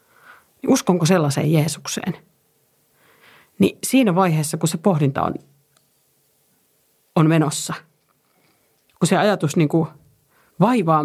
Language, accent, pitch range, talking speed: Finnish, native, 150-195 Hz, 90 wpm